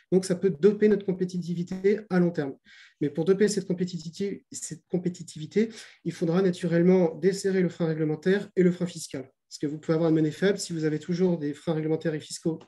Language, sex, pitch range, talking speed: French, male, 150-185 Hz, 200 wpm